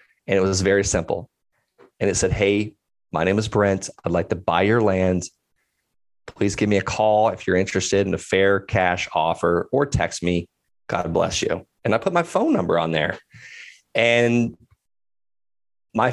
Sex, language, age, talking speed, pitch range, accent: male, English, 30-49, 180 wpm, 100-125 Hz, American